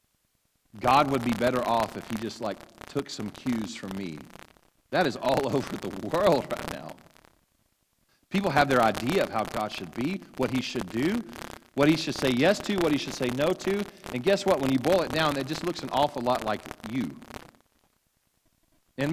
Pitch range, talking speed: 115-165 Hz, 200 wpm